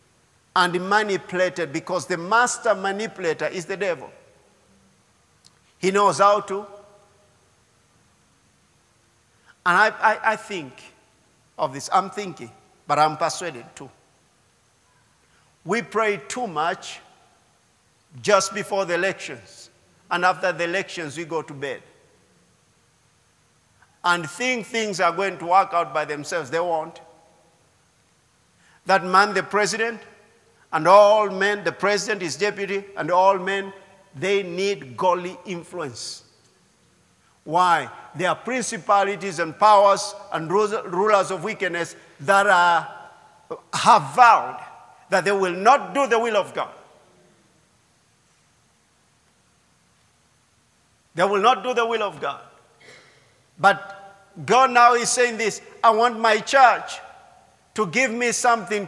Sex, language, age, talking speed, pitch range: male, English, 50-69, 120 wpm, 170-210 Hz